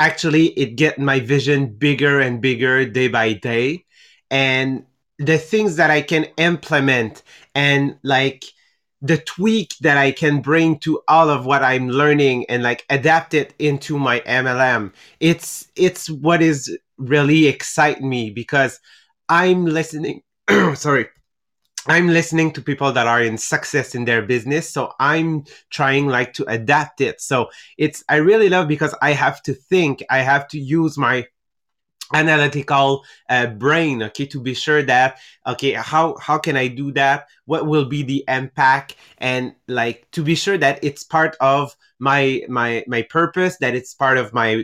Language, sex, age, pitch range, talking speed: English, male, 30-49, 130-155 Hz, 165 wpm